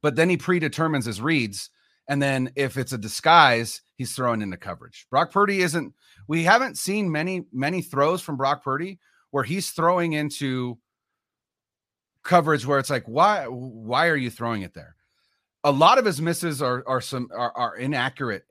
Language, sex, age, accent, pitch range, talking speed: English, male, 30-49, American, 110-155 Hz, 175 wpm